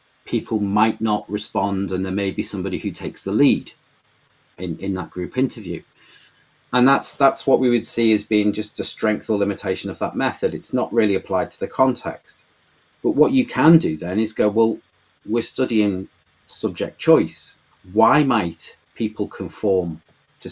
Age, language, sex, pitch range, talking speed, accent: 40-59, English, male, 95-115 Hz, 175 wpm, British